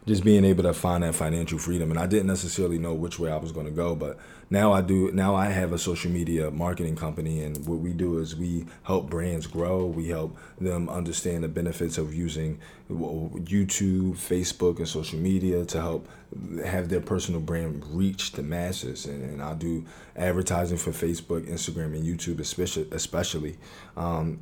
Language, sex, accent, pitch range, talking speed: English, male, American, 85-95 Hz, 180 wpm